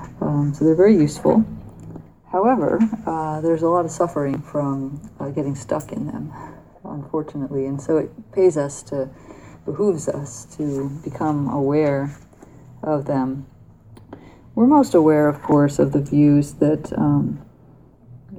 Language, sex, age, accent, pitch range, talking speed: English, female, 30-49, American, 135-155 Hz, 135 wpm